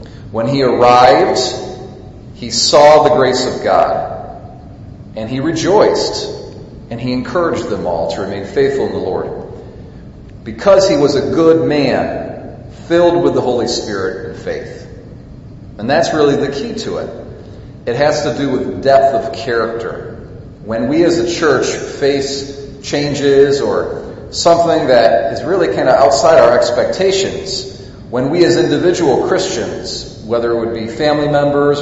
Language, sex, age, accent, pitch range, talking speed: English, male, 40-59, American, 115-150 Hz, 150 wpm